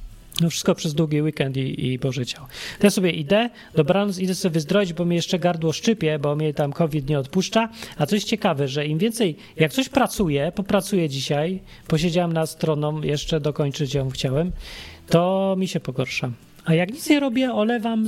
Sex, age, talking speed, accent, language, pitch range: male, 40-59, 185 wpm, native, Polish, 135-185 Hz